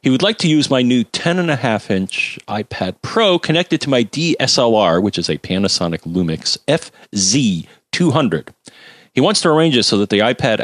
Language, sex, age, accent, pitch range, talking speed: English, male, 40-59, American, 90-145 Hz, 165 wpm